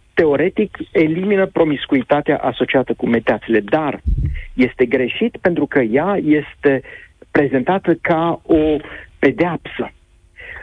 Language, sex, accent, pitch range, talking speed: Romanian, male, native, 150-205 Hz, 100 wpm